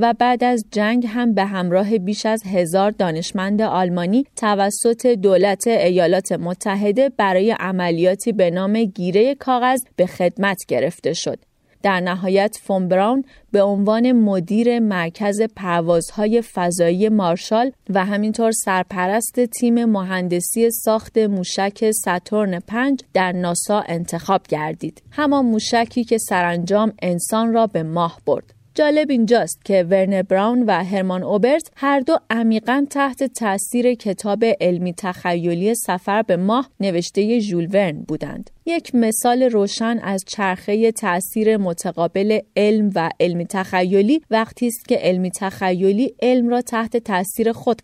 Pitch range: 185-230 Hz